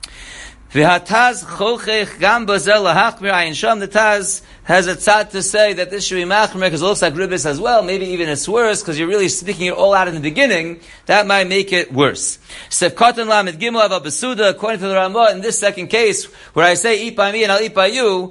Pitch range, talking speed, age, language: 185-225 Hz, 225 wpm, 40-59, English